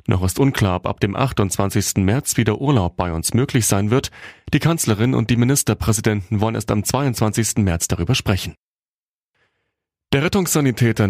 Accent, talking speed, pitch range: German, 155 wpm, 95-130 Hz